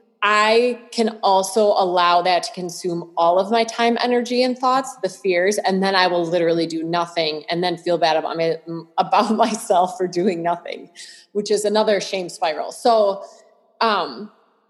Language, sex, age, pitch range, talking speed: English, female, 20-39, 170-205 Hz, 165 wpm